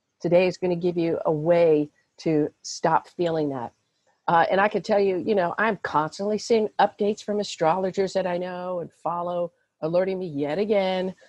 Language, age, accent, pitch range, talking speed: English, 50-69, American, 155-190 Hz, 185 wpm